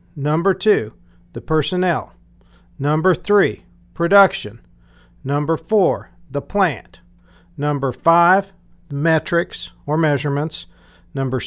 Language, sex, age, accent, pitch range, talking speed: English, male, 50-69, American, 130-170 Hz, 90 wpm